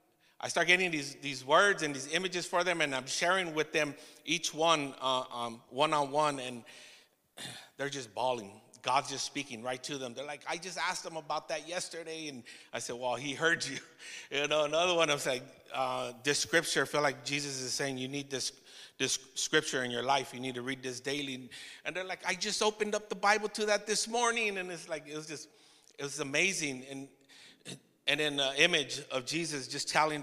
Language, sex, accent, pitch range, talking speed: English, male, American, 125-155 Hz, 215 wpm